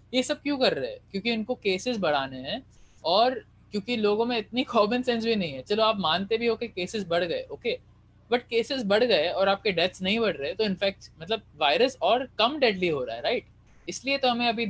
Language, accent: Hindi, native